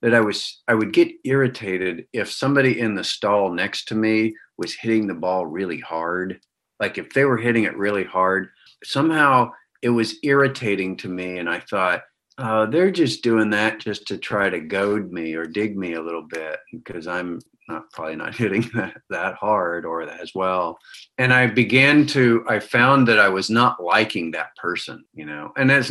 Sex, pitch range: male, 100-125 Hz